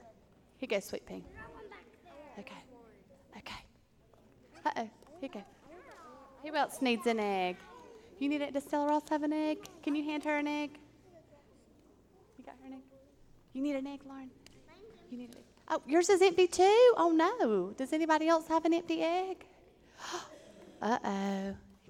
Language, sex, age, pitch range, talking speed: English, female, 30-49, 225-315 Hz, 155 wpm